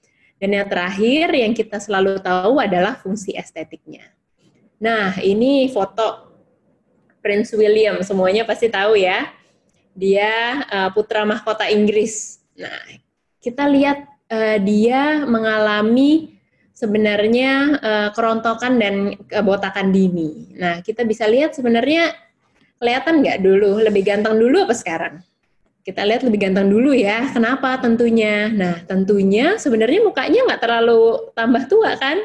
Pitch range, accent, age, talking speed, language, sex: 195-240 Hz, native, 20-39, 115 wpm, Indonesian, female